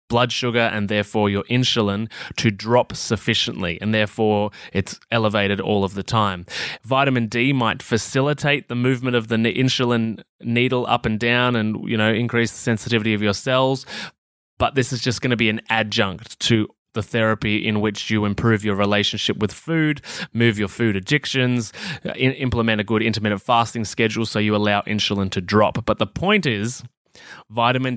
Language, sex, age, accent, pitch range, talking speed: English, male, 20-39, Australian, 110-130 Hz, 170 wpm